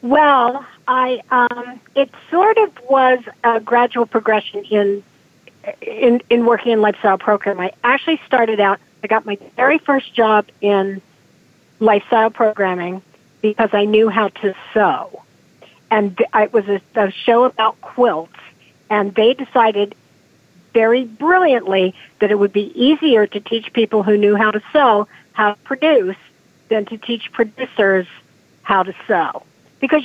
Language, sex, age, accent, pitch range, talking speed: English, female, 50-69, American, 205-245 Hz, 145 wpm